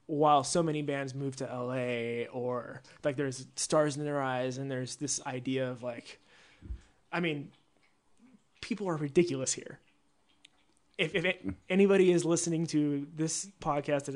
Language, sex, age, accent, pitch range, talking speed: English, male, 20-39, American, 135-155 Hz, 150 wpm